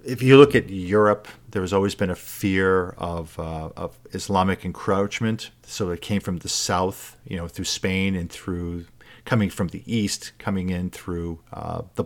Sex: male